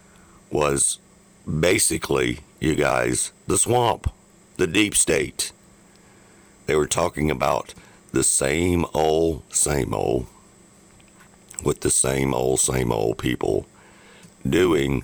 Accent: American